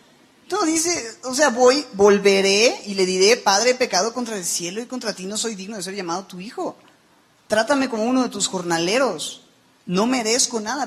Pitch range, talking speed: 165-210 Hz, 190 wpm